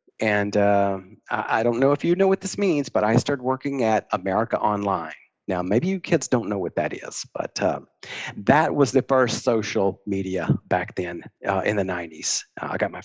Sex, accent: male, American